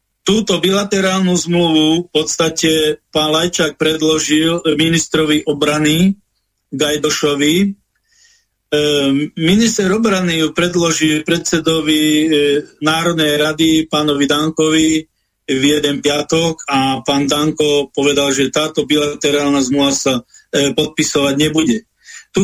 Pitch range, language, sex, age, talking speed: 150-185 Hz, Slovak, male, 40-59, 95 wpm